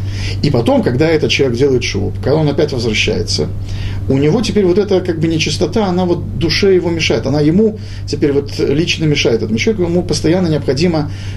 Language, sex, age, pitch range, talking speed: Russian, male, 40-59, 100-155 Hz, 185 wpm